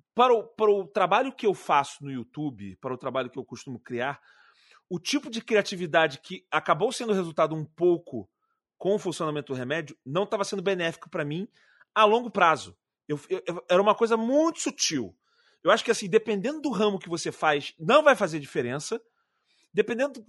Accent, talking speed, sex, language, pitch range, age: Brazilian, 190 wpm, male, Portuguese, 165-220 Hz, 30-49